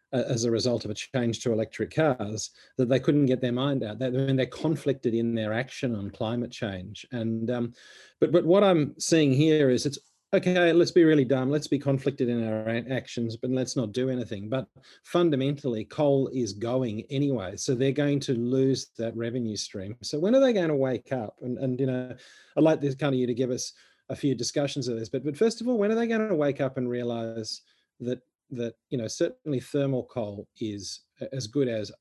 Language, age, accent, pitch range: English, 40-59, Australian, 115-140 Hz